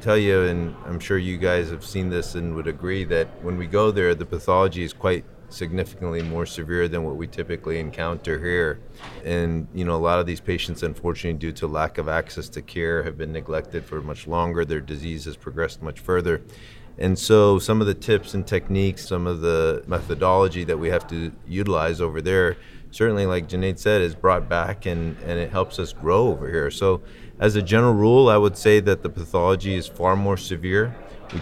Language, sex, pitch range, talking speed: English, male, 85-95 Hz, 210 wpm